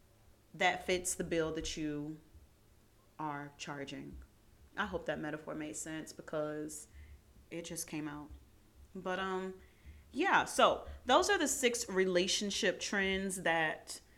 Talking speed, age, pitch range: 125 wpm, 30-49, 150-190 Hz